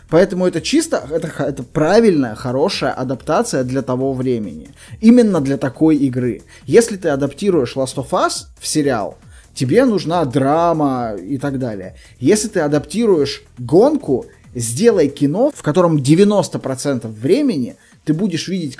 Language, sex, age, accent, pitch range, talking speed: Russian, male, 20-39, native, 130-175 Hz, 135 wpm